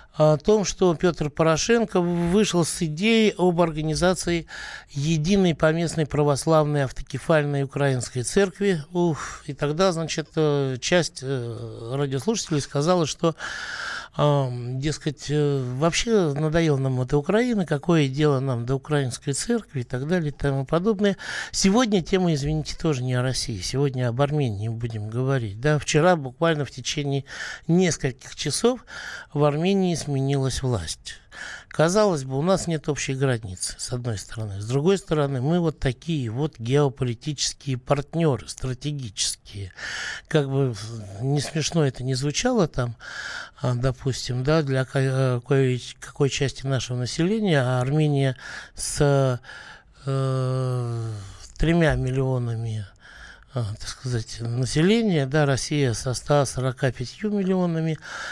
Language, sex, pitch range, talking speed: Russian, male, 130-160 Hz, 115 wpm